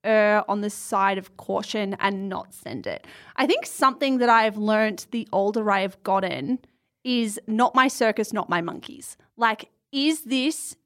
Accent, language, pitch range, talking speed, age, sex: Australian, English, 210-265 Hz, 170 wpm, 20-39, female